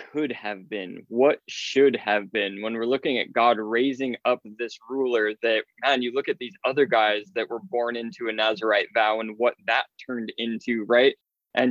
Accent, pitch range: American, 115-140 Hz